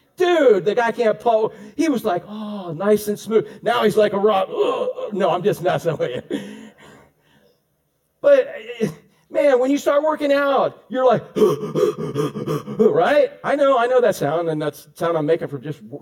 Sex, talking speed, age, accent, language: male, 200 wpm, 50-69, American, English